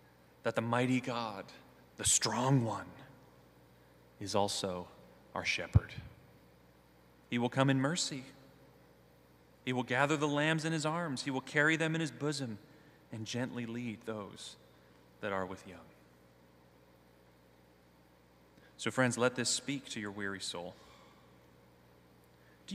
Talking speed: 130 wpm